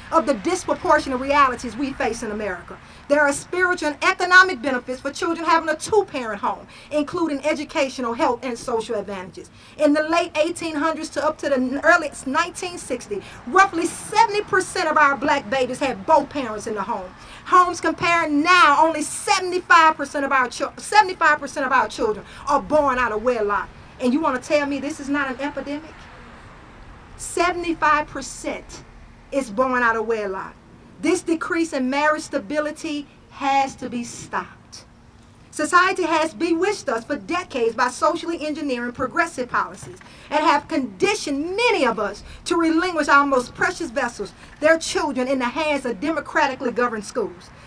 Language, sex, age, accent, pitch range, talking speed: English, female, 40-59, American, 260-335 Hz, 155 wpm